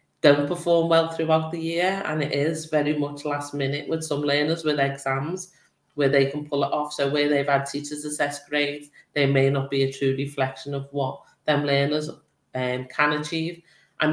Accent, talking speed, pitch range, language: British, 195 wpm, 135-150 Hz, English